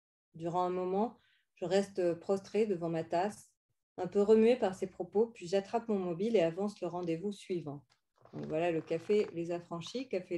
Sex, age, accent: female, 40-59, French